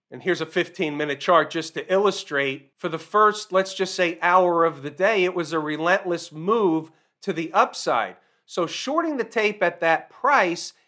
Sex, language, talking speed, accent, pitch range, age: male, English, 190 wpm, American, 155-200 Hz, 40-59